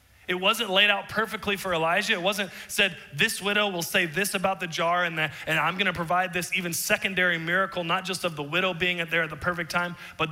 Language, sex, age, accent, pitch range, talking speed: English, male, 30-49, American, 150-185 Hz, 225 wpm